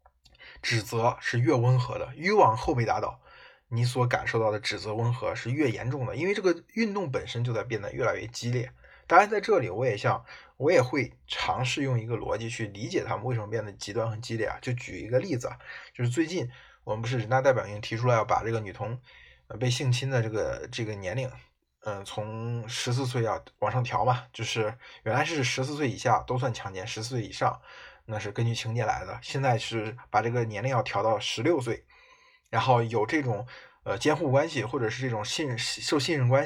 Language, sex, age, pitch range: Chinese, male, 20-39, 115-135 Hz